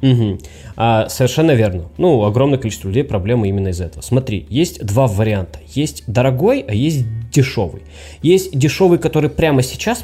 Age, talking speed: 20-39, 155 wpm